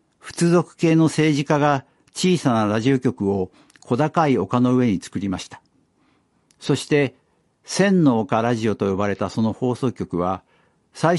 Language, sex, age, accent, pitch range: Japanese, male, 60-79, native, 115-155 Hz